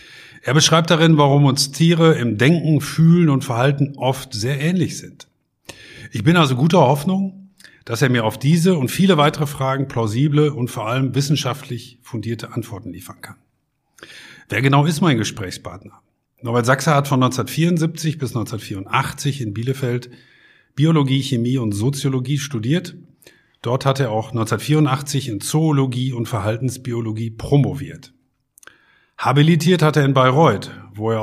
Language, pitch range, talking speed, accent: German, 115-145 Hz, 140 wpm, German